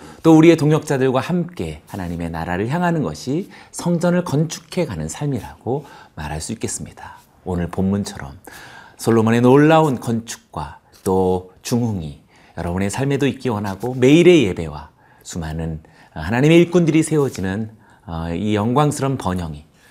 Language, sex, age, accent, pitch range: Korean, male, 40-59, native, 85-135 Hz